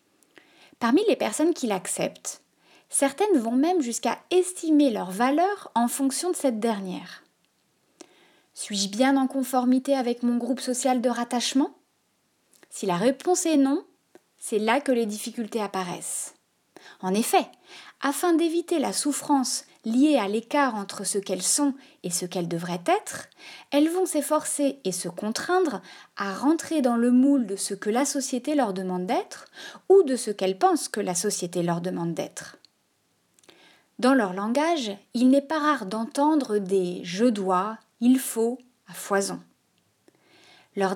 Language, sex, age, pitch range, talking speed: French, female, 20-39, 205-295 Hz, 150 wpm